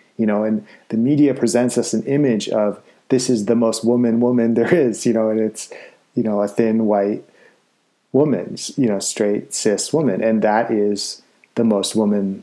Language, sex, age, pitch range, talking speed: English, male, 30-49, 100-115 Hz, 190 wpm